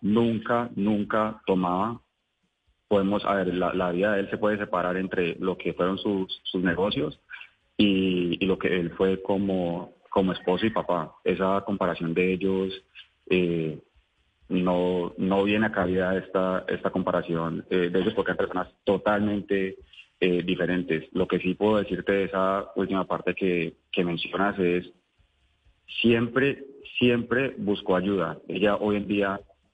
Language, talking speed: Spanish, 150 wpm